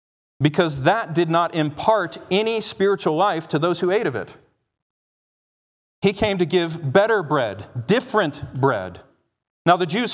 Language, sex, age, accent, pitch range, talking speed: English, male, 40-59, American, 130-200 Hz, 150 wpm